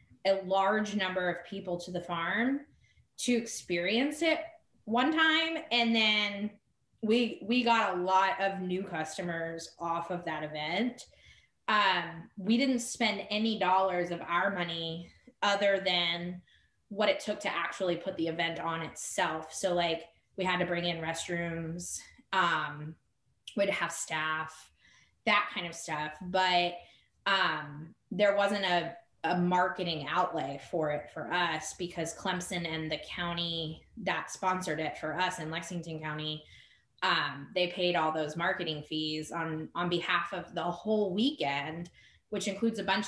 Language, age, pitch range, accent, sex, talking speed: English, 20-39, 165-205 Hz, American, female, 150 wpm